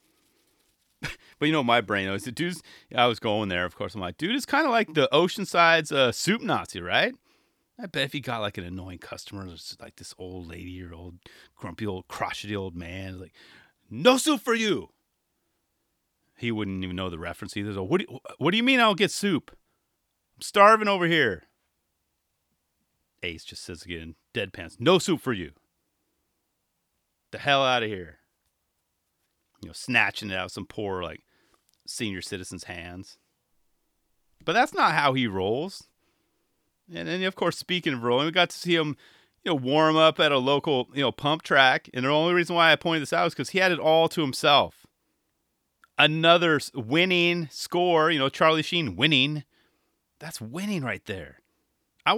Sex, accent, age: male, American, 30-49